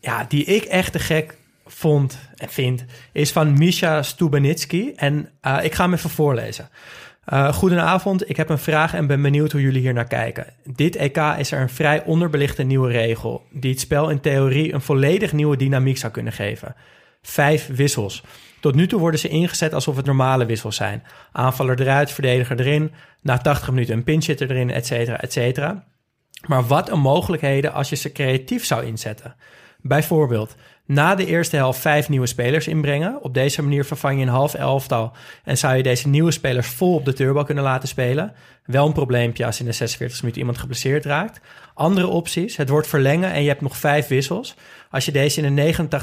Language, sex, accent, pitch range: Dutch, male, Dutch, 130-155 Hz